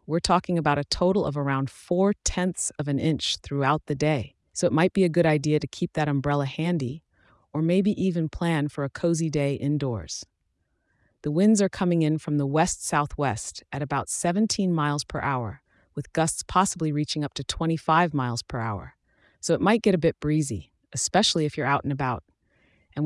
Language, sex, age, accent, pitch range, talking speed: English, female, 30-49, American, 140-165 Hz, 195 wpm